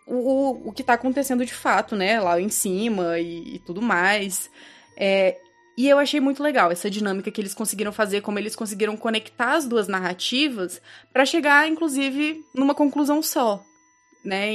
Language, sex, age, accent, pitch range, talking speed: Portuguese, female, 20-39, Brazilian, 190-265 Hz, 170 wpm